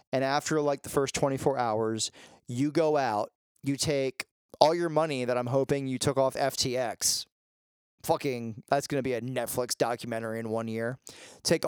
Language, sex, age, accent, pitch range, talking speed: English, male, 30-49, American, 125-150 Hz, 175 wpm